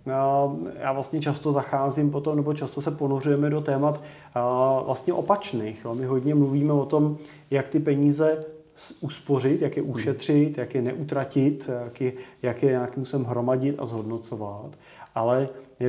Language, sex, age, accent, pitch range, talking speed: Czech, male, 30-49, native, 125-145 Hz, 145 wpm